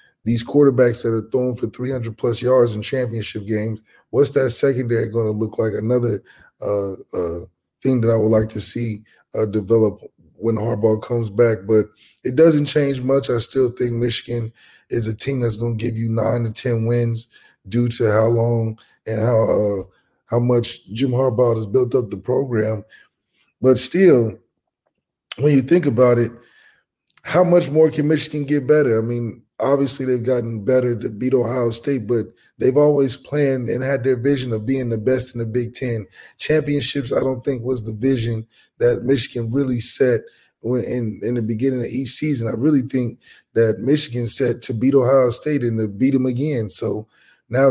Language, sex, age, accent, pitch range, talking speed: English, male, 20-39, American, 115-130 Hz, 185 wpm